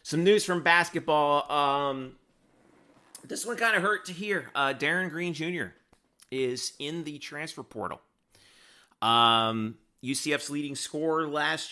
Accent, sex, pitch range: American, male, 125-165 Hz